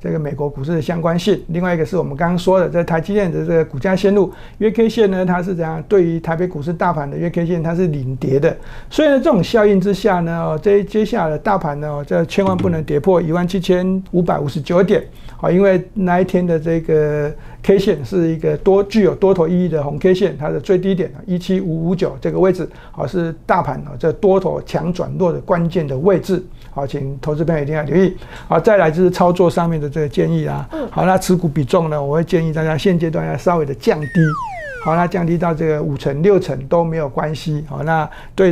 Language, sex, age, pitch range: Chinese, male, 60-79, 155-190 Hz